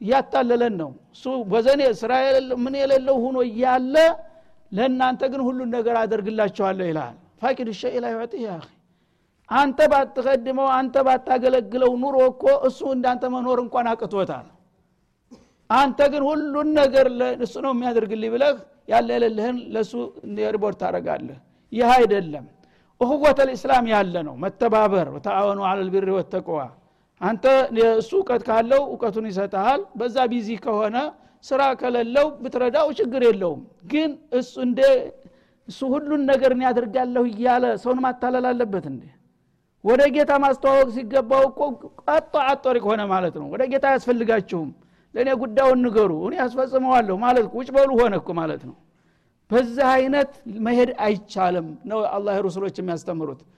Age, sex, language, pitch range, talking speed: 60-79, male, Amharic, 220-265 Hz, 50 wpm